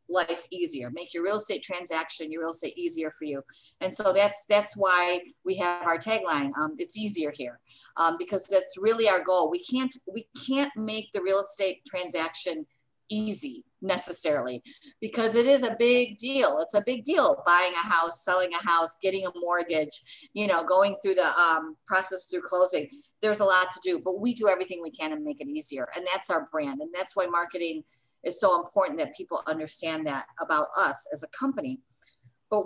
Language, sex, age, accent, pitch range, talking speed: English, female, 50-69, American, 165-215 Hz, 195 wpm